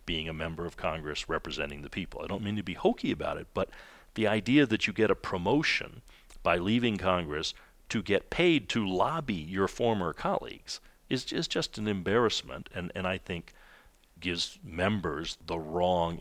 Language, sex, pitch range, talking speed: English, male, 85-105 Hz, 180 wpm